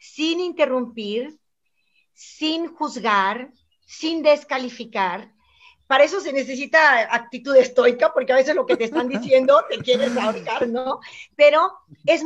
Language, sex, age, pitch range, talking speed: English, female, 40-59, 225-290 Hz, 125 wpm